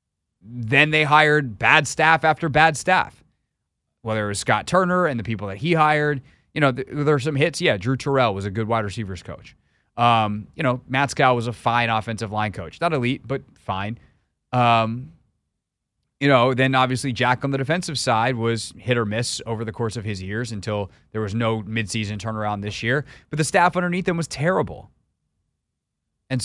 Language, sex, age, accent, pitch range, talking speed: English, male, 30-49, American, 110-150 Hz, 195 wpm